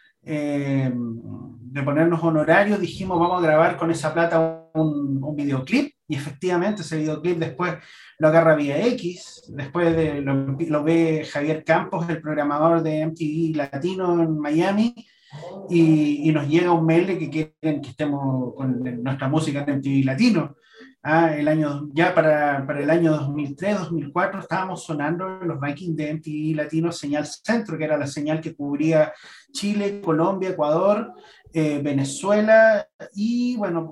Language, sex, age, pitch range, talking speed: Spanish, male, 30-49, 150-190 Hz, 150 wpm